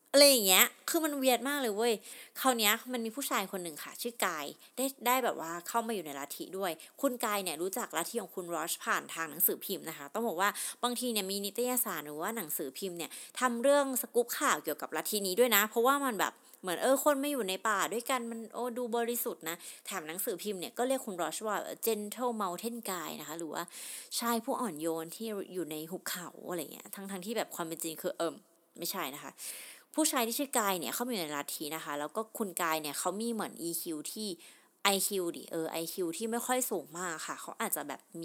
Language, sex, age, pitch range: Thai, female, 30-49, 175-245 Hz